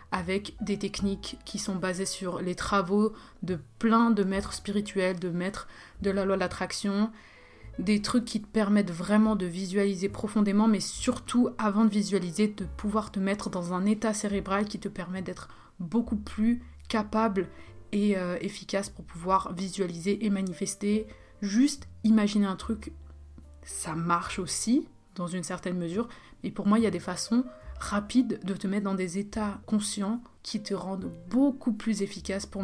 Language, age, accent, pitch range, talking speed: French, 20-39, French, 190-215 Hz, 165 wpm